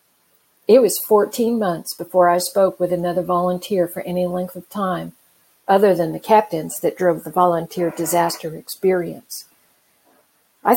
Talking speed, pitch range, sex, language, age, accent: 145 wpm, 175-200 Hz, female, English, 50-69, American